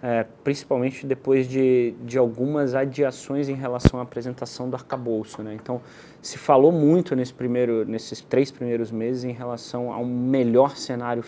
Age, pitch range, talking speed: 20-39, 125-150 Hz, 155 wpm